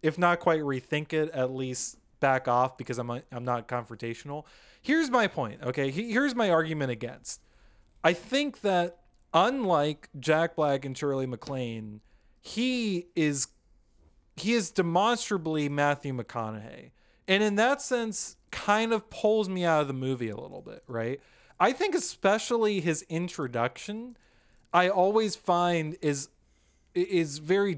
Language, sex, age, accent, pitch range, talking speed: English, male, 30-49, American, 135-195 Hz, 145 wpm